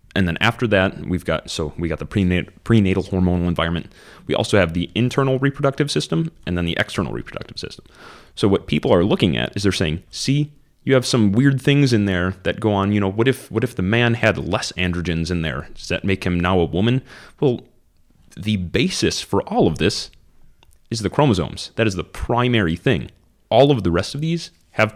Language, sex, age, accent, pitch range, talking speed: English, male, 30-49, American, 90-120 Hz, 215 wpm